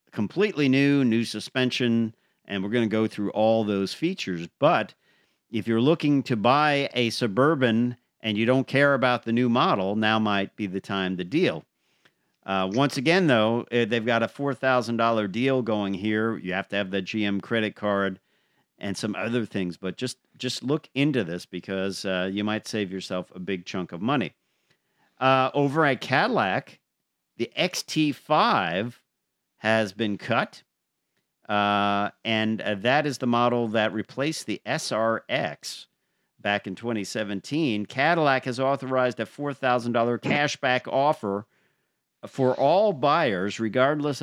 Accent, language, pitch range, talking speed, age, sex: American, English, 105-130 Hz, 150 wpm, 50-69, male